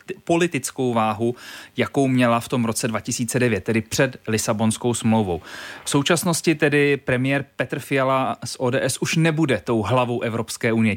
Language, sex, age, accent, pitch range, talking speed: Czech, male, 30-49, native, 110-145 Hz, 140 wpm